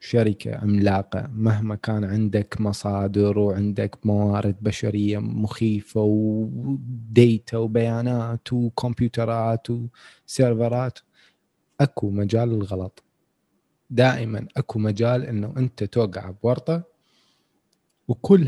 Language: Arabic